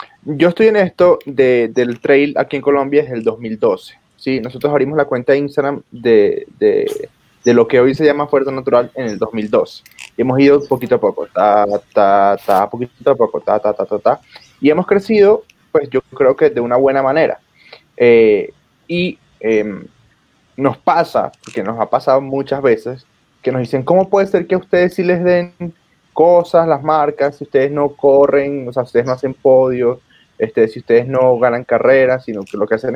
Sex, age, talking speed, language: male, 20-39, 200 wpm, Spanish